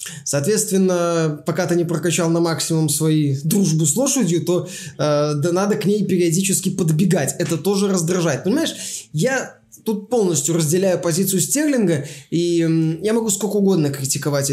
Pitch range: 160-210 Hz